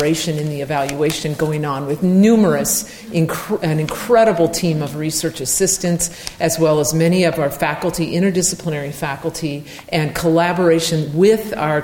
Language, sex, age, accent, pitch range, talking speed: English, female, 50-69, American, 155-185 Hz, 135 wpm